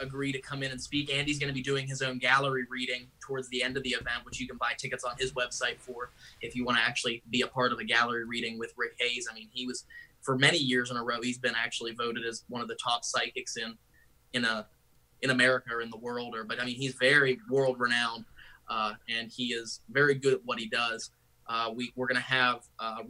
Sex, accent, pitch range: male, American, 115-130 Hz